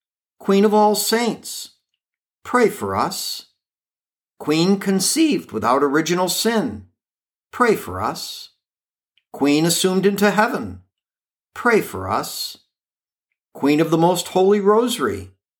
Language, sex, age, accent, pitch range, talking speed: English, male, 60-79, American, 145-210 Hz, 110 wpm